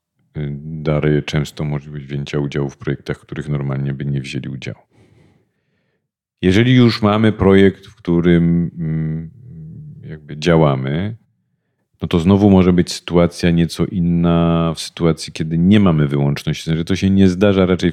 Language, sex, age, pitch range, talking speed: Polish, male, 40-59, 80-95 Hz, 135 wpm